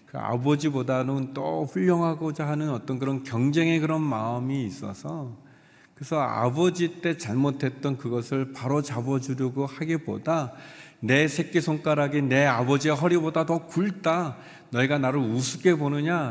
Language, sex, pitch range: Korean, male, 110-155 Hz